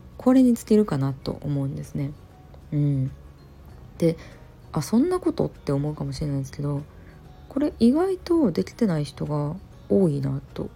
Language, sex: Japanese, female